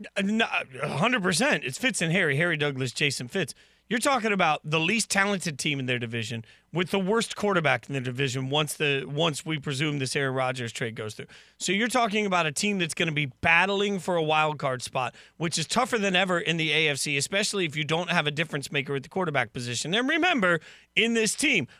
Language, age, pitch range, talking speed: English, 40-59, 160-225 Hz, 220 wpm